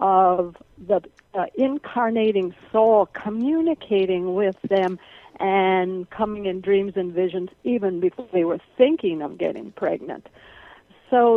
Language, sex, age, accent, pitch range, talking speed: English, female, 60-79, American, 185-215 Hz, 120 wpm